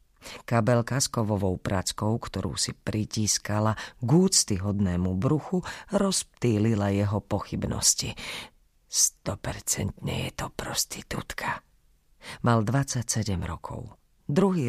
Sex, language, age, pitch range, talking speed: female, Slovak, 40-59, 100-140 Hz, 85 wpm